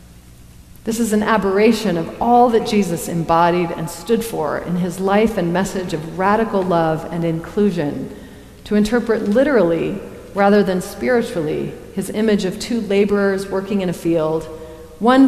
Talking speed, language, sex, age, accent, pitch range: 150 wpm, English, female, 40-59, American, 170-220 Hz